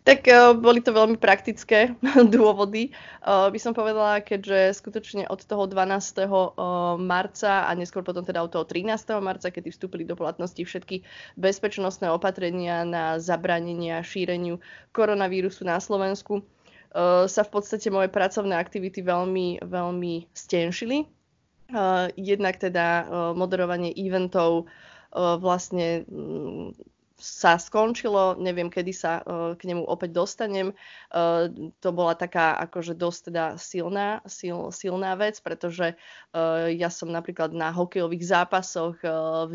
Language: Slovak